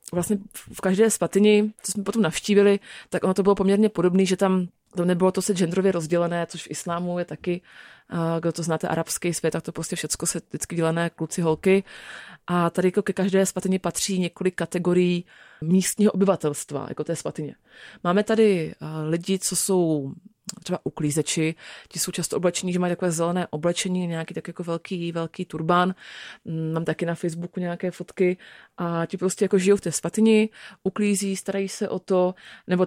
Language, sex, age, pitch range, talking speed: Czech, female, 30-49, 170-195 Hz, 175 wpm